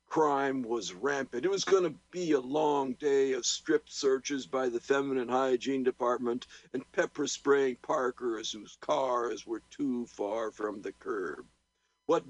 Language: English